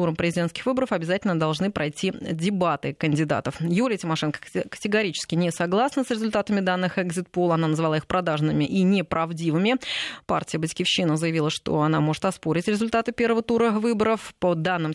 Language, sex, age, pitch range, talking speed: Russian, female, 30-49, 165-210 Hz, 140 wpm